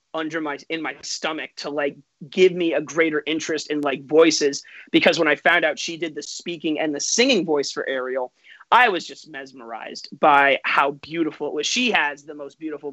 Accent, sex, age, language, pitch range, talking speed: American, male, 30-49, English, 145-175 Hz, 205 wpm